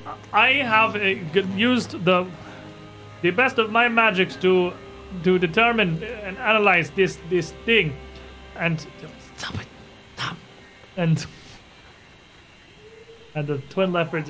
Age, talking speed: 30-49, 110 wpm